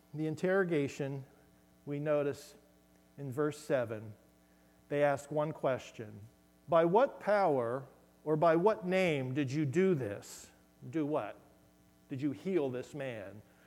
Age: 50-69